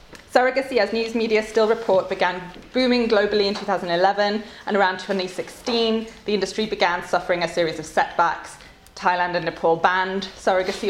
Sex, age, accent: female, 20-39, British